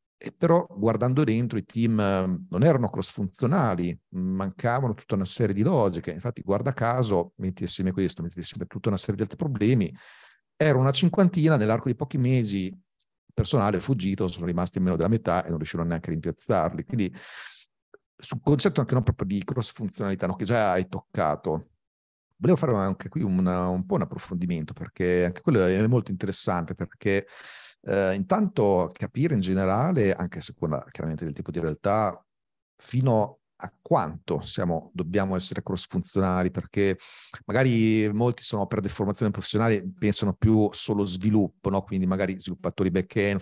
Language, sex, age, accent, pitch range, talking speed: Italian, male, 50-69, native, 90-115 Hz, 165 wpm